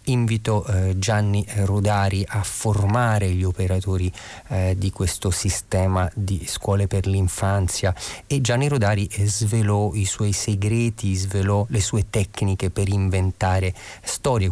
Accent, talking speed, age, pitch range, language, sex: native, 115 wpm, 30-49, 95-110 Hz, Italian, male